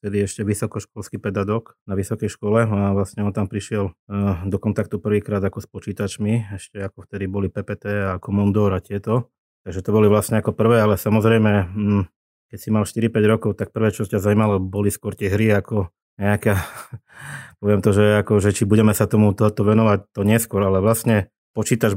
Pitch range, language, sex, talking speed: 100-110 Hz, Slovak, male, 185 wpm